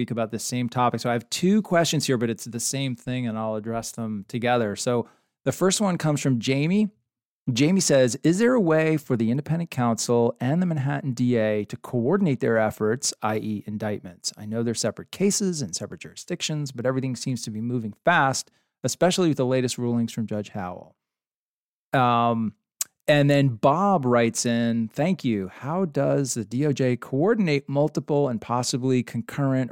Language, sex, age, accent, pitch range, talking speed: English, male, 40-59, American, 115-140 Hz, 175 wpm